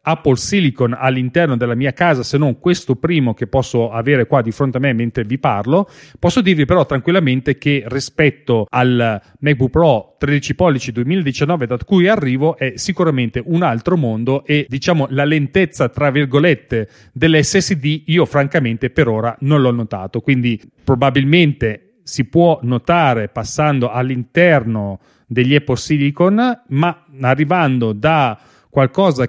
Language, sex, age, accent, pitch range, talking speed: Italian, male, 40-59, native, 125-160 Hz, 145 wpm